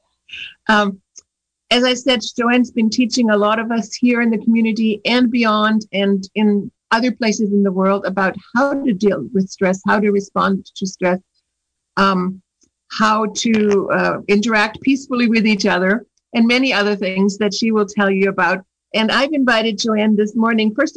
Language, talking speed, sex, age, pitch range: English, 175 wpm, female, 50-69, 195-235 Hz